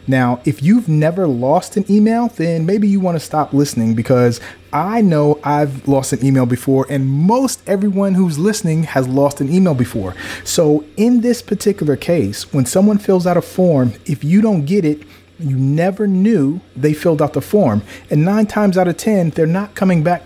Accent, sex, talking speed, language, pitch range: American, male, 195 wpm, English, 130-180 Hz